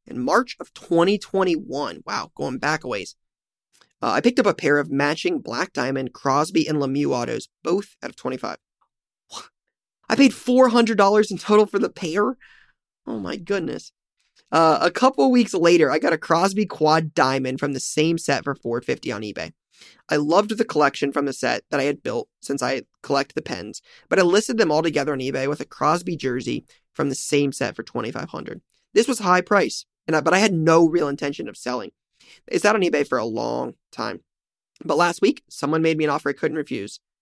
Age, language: 20-39, English